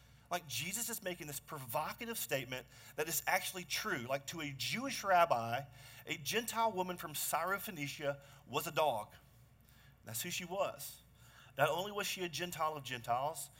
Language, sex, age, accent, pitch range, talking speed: English, male, 40-59, American, 130-180 Hz, 160 wpm